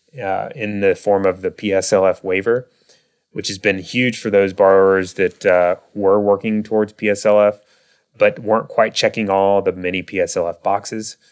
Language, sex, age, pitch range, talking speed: English, male, 30-49, 95-105 Hz, 160 wpm